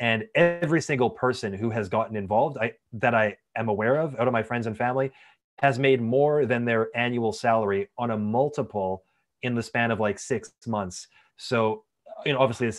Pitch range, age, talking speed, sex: 110-130 Hz, 30-49, 195 wpm, male